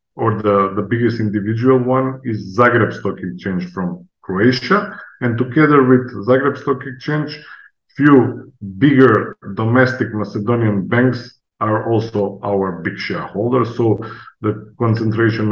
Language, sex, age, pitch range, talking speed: English, male, 50-69, 105-125 Hz, 120 wpm